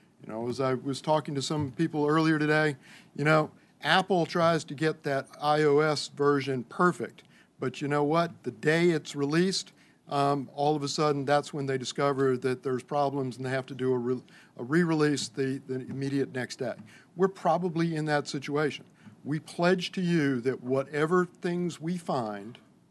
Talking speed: 175 wpm